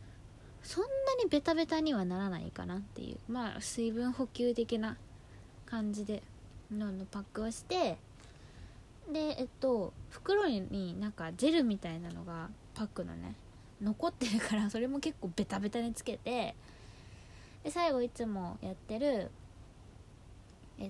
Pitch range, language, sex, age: 165-240 Hz, Japanese, female, 20-39